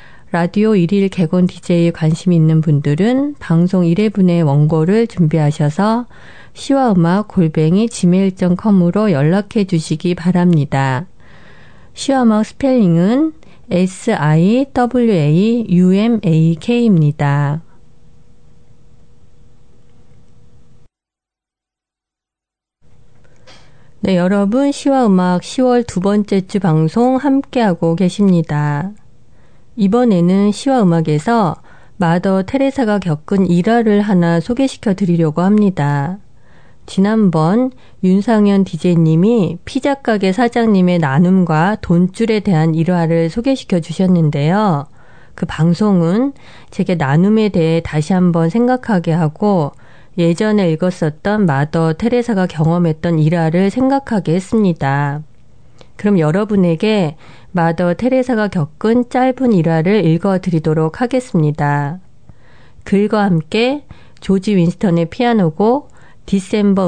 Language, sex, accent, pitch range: Korean, female, native, 160-215 Hz